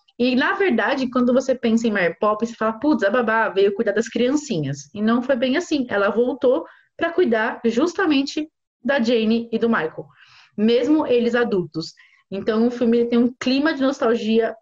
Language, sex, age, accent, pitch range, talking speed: Portuguese, female, 20-39, Brazilian, 195-255 Hz, 180 wpm